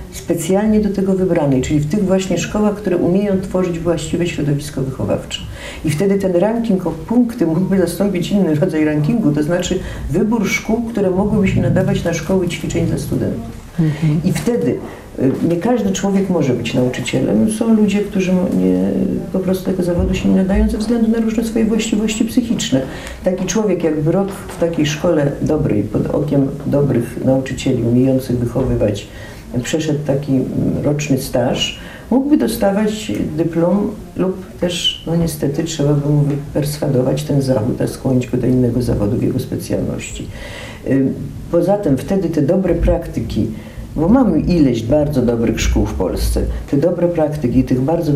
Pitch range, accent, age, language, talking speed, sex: 135-190 Hz, native, 50-69, Polish, 155 wpm, female